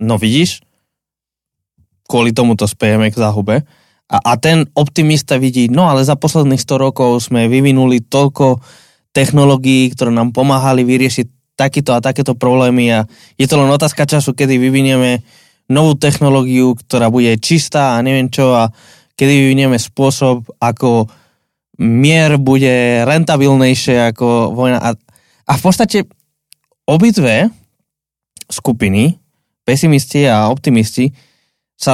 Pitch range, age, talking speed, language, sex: 115-140 Hz, 20-39, 125 wpm, Slovak, male